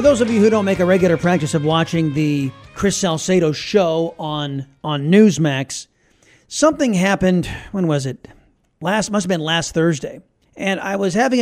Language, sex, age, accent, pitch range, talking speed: English, male, 40-59, American, 155-195 Hz, 180 wpm